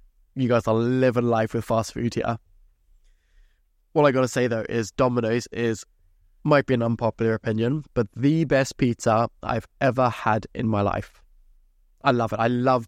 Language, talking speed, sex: English, 170 wpm, male